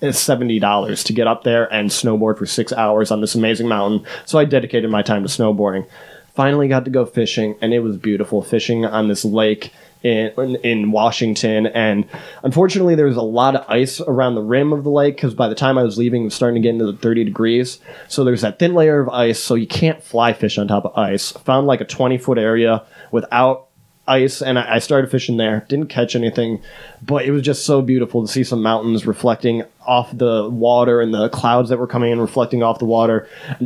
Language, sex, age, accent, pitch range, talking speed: English, male, 20-39, American, 110-135 Hz, 225 wpm